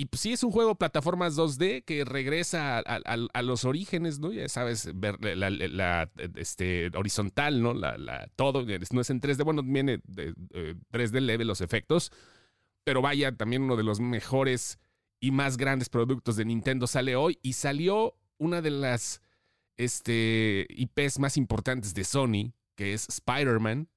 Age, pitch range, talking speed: 30-49, 115-145 Hz, 150 wpm